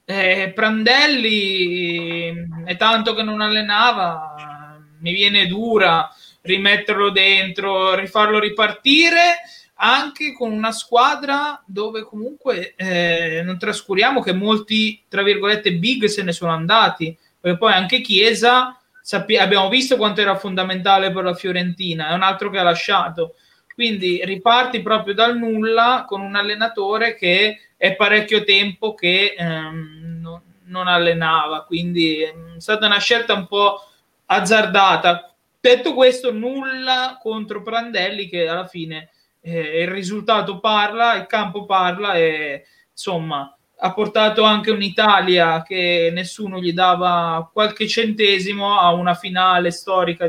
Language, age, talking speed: Italian, 20-39, 125 wpm